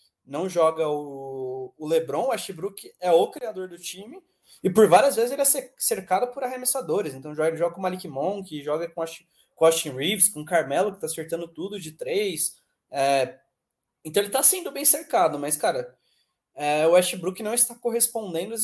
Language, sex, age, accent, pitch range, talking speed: English, male, 20-39, Brazilian, 160-200 Hz, 185 wpm